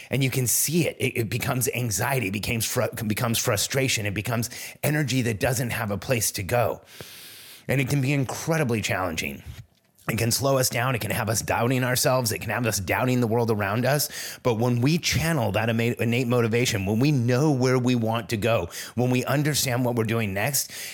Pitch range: 115-135 Hz